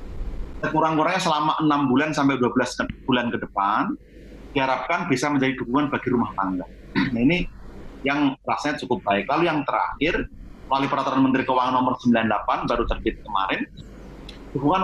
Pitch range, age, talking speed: 120-140 Hz, 30-49, 140 wpm